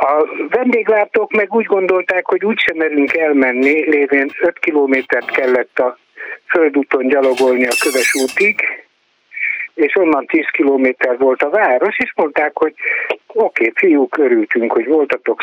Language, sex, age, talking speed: Hungarian, male, 60-79, 140 wpm